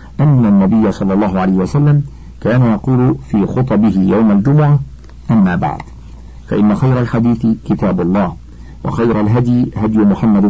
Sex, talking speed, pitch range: male, 130 wpm, 100-135 Hz